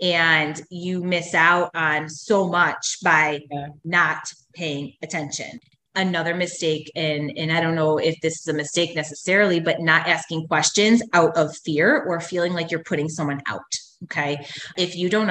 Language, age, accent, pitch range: English, 20-39, American, 155-195 Hz